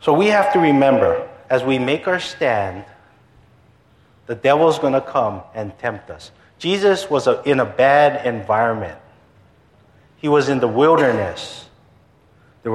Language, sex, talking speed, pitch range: English, male, 140 wpm, 110-155 Hz